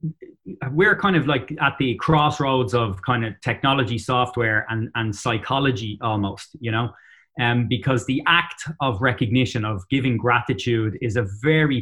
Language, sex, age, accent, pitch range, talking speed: English, male, 20-39, Irish, 115-145 Hz, 150 wpm